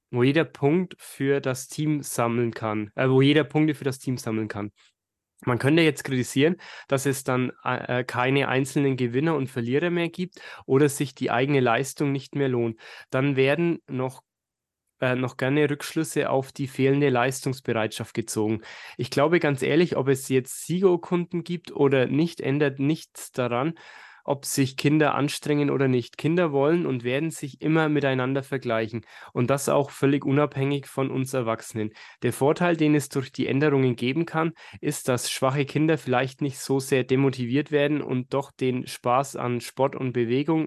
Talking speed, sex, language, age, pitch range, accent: 170 wpm, male, German, 20-39, 125-150 Hz, German